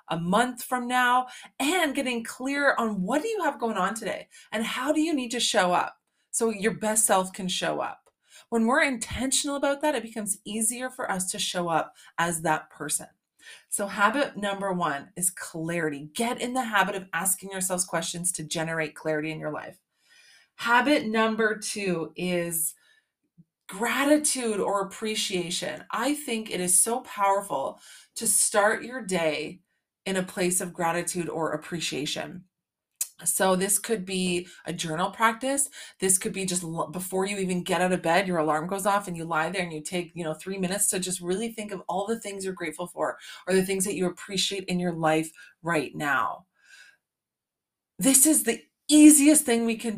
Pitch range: 175-235 Hz